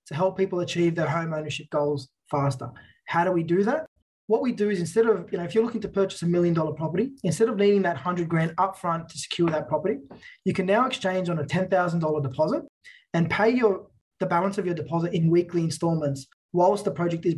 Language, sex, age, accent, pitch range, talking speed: English, male, 20-39, Australian, 160-195 Hz, 225 wpm